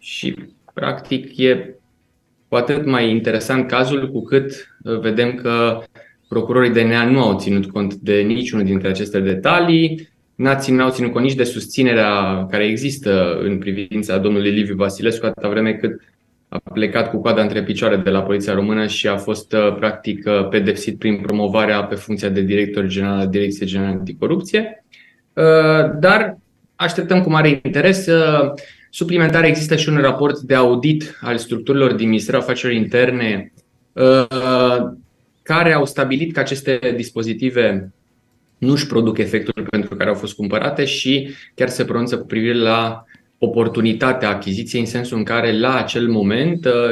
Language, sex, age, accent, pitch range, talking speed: Romanian, male, 20-39, native, 105-130 Hz, 150 wpm